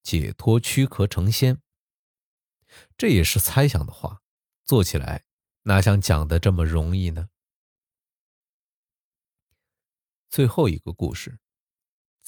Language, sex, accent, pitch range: Chinese, male, native, 90-130 Hz